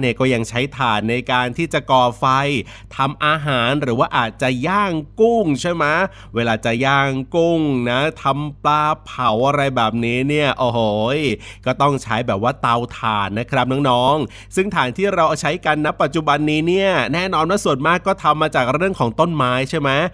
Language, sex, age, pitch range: Thai, male, 30-49, 125-155 Hz